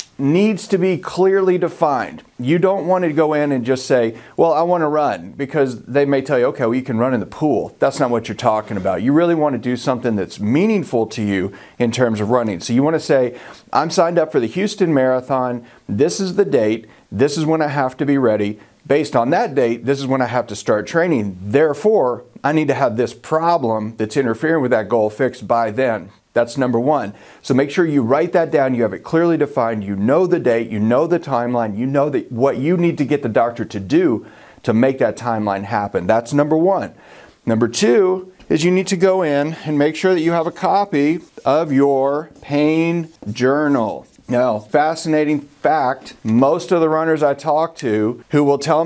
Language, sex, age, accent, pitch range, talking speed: English, male, 40-59, American, 115-160 Hz, 220 wpm